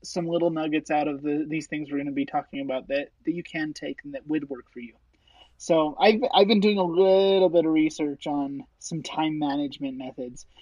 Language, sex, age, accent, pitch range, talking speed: English, male, 20-39, American, 150-195 Hz, 220 wpm